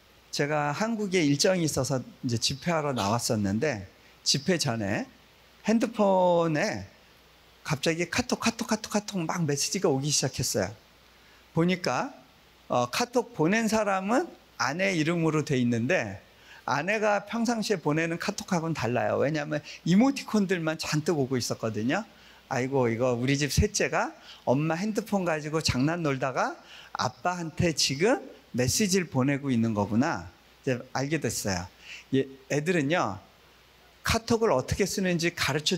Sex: male